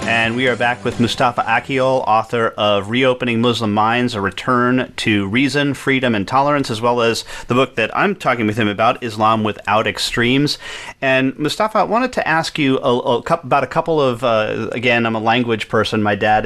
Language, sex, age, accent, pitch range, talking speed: English, male, 40-59, American, 115-140 Hz, 190 wpm